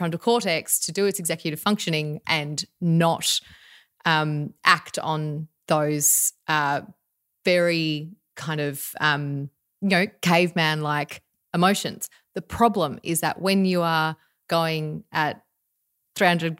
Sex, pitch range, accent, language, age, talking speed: female, 155-185 Hz, Australian, English, 30-49, 120 wpm